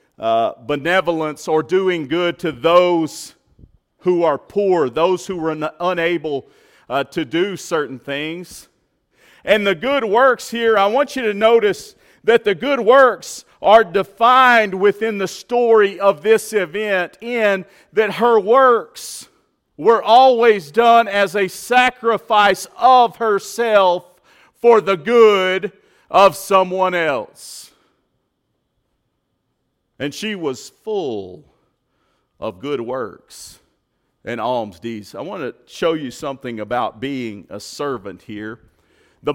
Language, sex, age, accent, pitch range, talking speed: English, male, 40-59, American, 170-225 Hz, 125 wpm